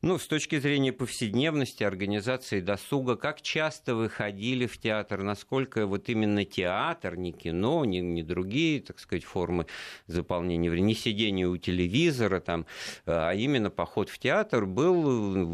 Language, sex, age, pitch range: Russian, male, 50-69, 85-125 Hz